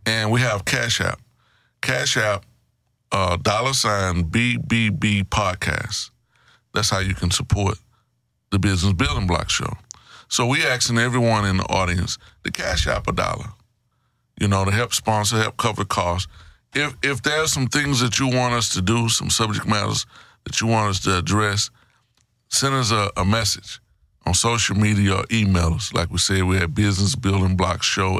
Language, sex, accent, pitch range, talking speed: English, male, American, 100-120 Hz, 170 wpm